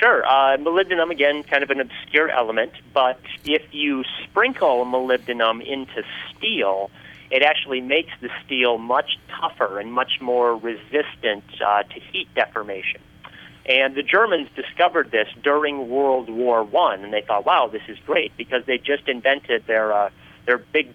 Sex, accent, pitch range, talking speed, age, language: male, American, 115-145 Hz, 160 wpm, 40-59, English